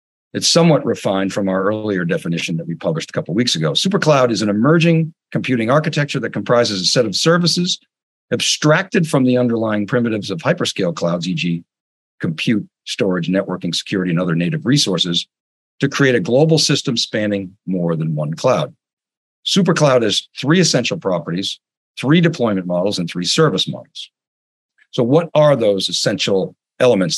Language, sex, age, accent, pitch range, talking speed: English, male, 50-69, American, 95-155 Hz, 160 wpm